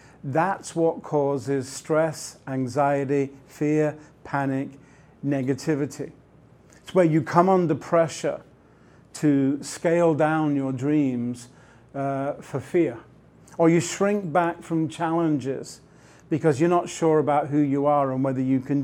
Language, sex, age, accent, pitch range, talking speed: English, male, 50-69, British, 135-165 Hz, 125 wpm